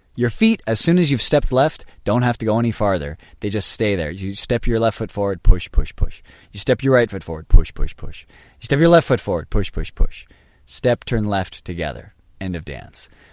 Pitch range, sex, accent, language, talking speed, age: 80-110 Hz, male, American, English, 235 wpm, 20-39